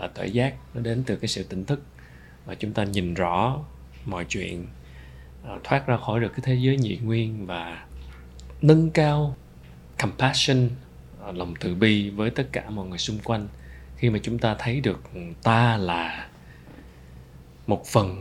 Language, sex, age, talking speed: Vietnamese, male, 20-39, 170 wpm